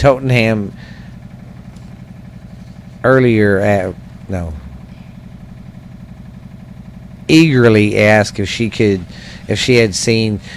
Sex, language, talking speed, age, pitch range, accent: male, English, 75 wpm, 50-69, 90-115 Hz, American